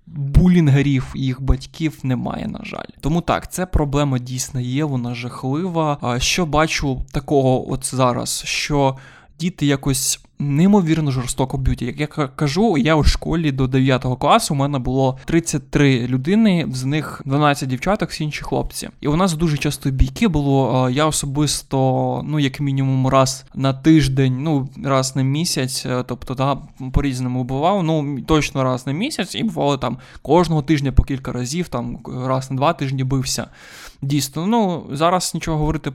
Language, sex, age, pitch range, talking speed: Ukrainian, male, 20-39, 130-160 Hz, 155 wpm